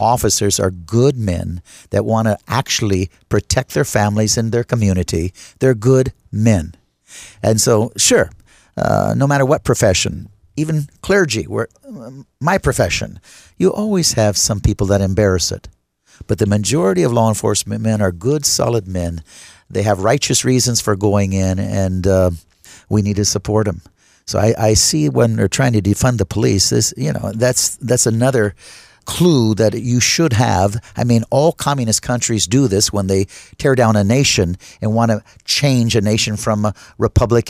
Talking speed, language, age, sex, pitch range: 175 wpm, English, 50-69, male, 100-125 Hz